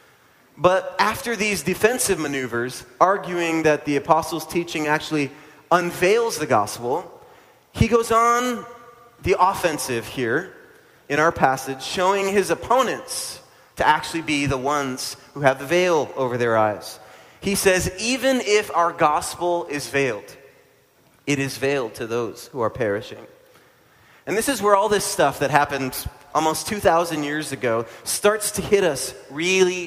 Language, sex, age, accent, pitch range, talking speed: English, male, 30-49, American, 140-185 Hz, 145 wpm